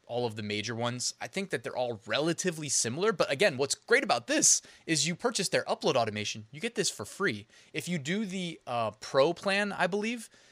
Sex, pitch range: male, 115-150 Hz